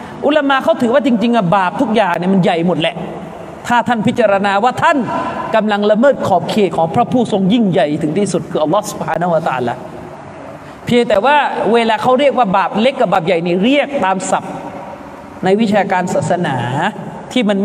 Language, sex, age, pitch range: Thai, male, 30-49, 175-245 Hz